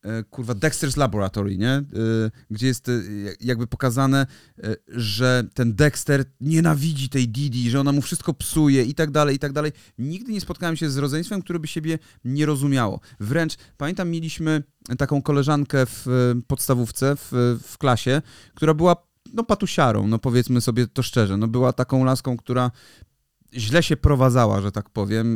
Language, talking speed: Polish, 155 wpm